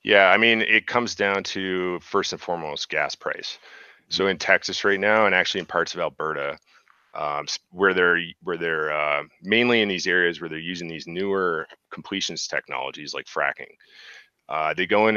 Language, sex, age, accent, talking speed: English, male, 30-49, American, 180 wpm